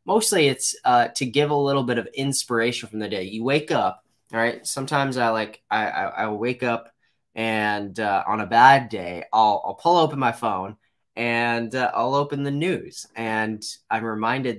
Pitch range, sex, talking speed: 105-125 Hz, male, 190 wpm